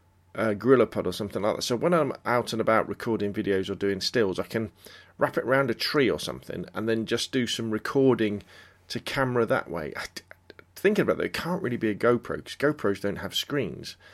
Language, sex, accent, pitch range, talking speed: English, male, British, 95-115 Hz, 225 wpm